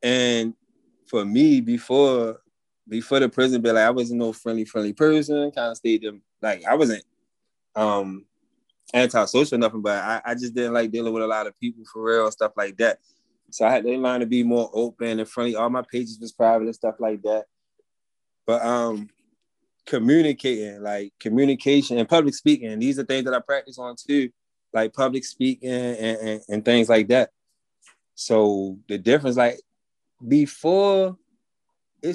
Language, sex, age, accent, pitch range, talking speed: English, male, 20-39, American, 115-145 Hz, 175 wpm